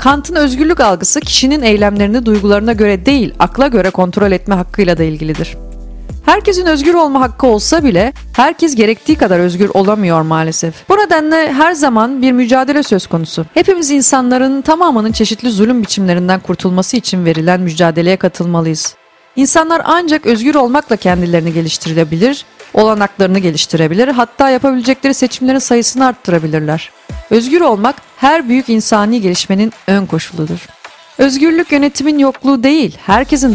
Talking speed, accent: 130 wpm, native